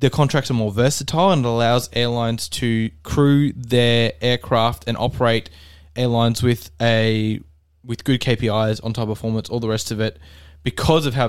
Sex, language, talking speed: male, English, 170 wpm